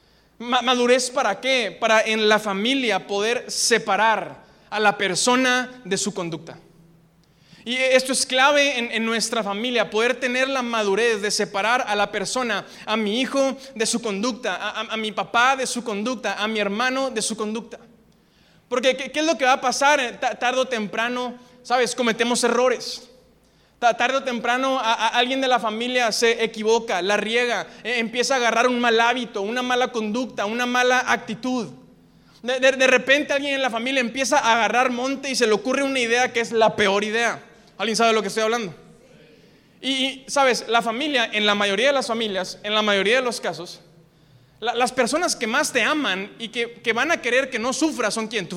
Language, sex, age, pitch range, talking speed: Spanish, male, 20-39, 215-255 Hz, 185 wpm